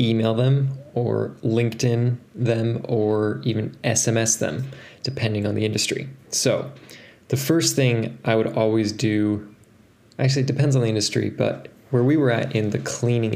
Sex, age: male, 20-39